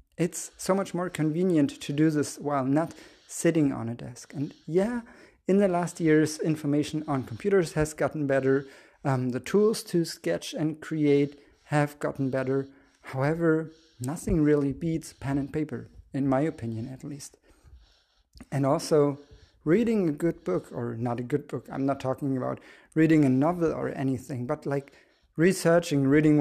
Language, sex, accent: English, male, German